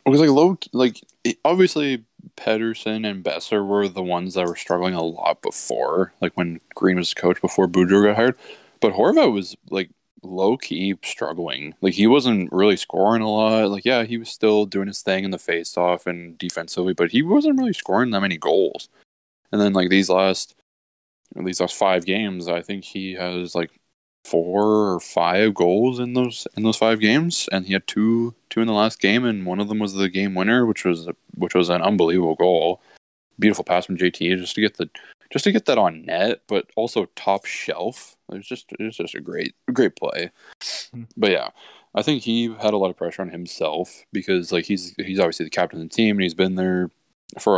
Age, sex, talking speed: 20-39, male, 210 wpm